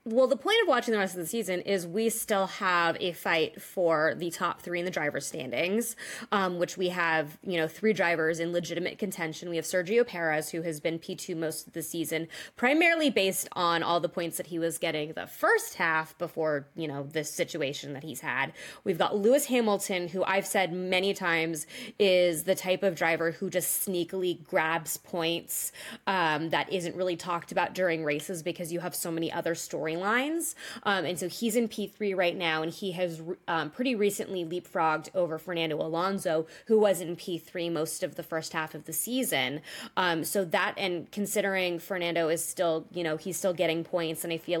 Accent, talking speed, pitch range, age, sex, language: American, 200 wpm, 165-190 Hz, 20-39, female, English